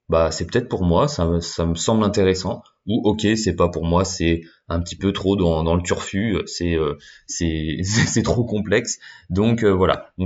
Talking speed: 205 wpm